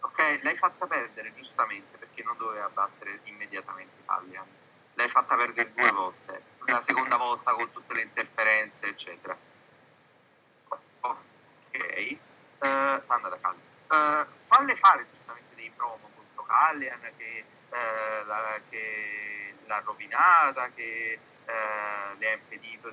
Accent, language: native, Italian